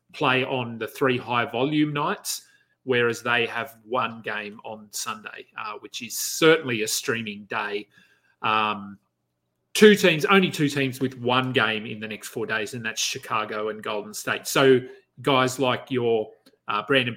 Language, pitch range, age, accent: English, 115-145 Hz, 30-49, Australian